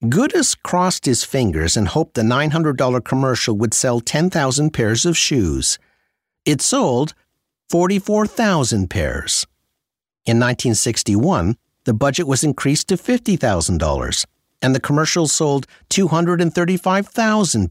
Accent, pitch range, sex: American, 110-180 Hz, male